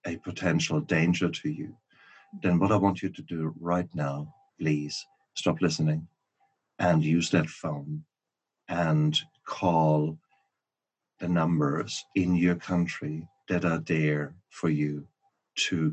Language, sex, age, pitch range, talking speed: English, male, 50-69, 75-90 Hz, 130 wpm